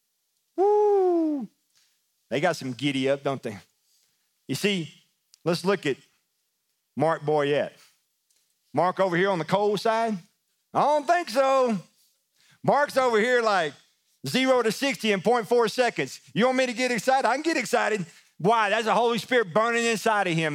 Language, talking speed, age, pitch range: English, 155 wpm, 40-59, 140-225 Hz